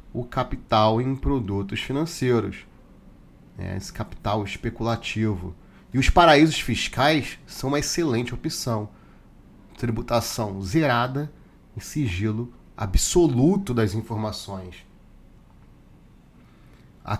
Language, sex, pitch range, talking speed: Portuguese, male, 105-140 Hz, 85 wpm